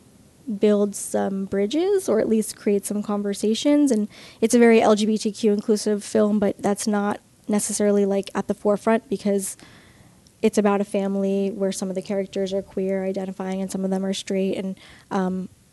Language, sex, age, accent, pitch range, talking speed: English, female, 10-29, American, 200-225 Hz, 170 wpm